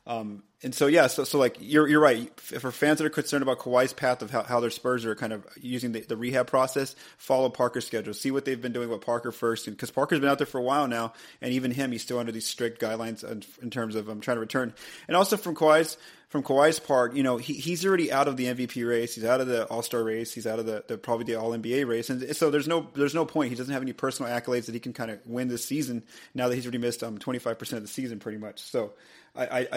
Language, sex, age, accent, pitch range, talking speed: English, male, 30-49, American, 115-145 Hz, 280 wpm